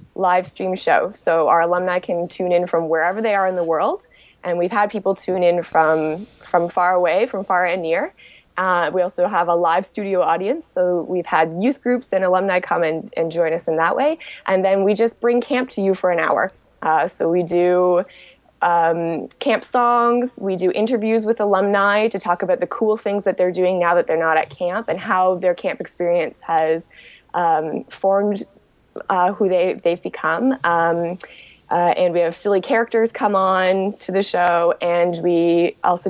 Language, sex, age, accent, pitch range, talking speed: English, female, 20-39, American, 170-195 Hz, 200 wpm